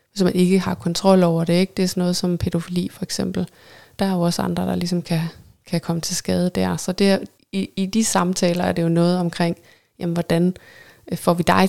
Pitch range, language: 175-220 Hz, Danish